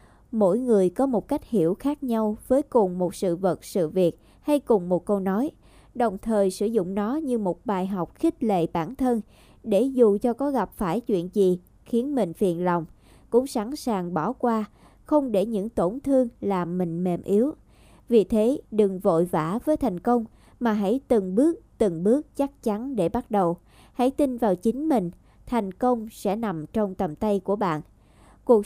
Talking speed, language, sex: 195 wpm, Vietnamese, male